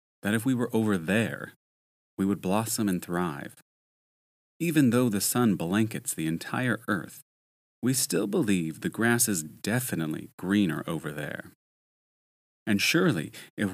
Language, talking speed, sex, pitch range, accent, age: English, 140 wpm, male, 90-120 Hz, American, 30-49